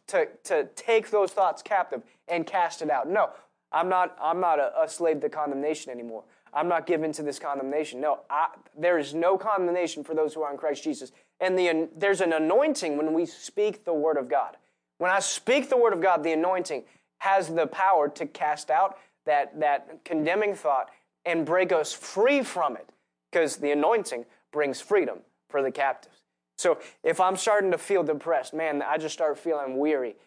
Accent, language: American, English